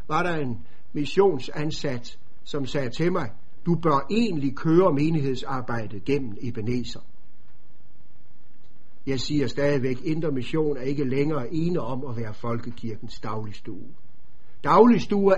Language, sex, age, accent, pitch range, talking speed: Danish, male, 60-79, native, 120-165 Hz, 115 wpm